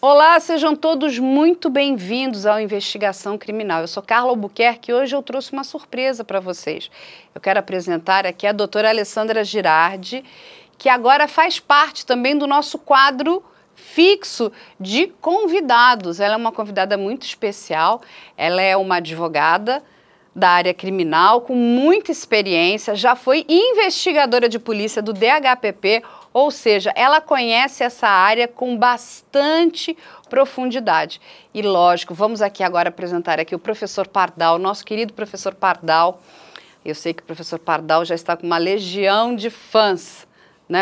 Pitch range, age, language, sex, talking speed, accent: 190-270 Hz, 40-59, Portuguese, female, 145 wpm, Brazilian